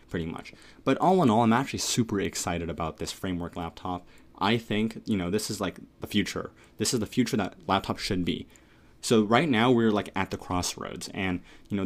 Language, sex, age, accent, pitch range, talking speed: English, male, 30-49, American, 95-120 Hz, 215 wpm